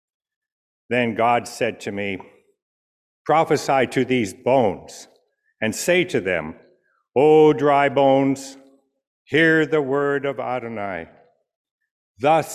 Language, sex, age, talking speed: English, male, 60-79, 105 wpm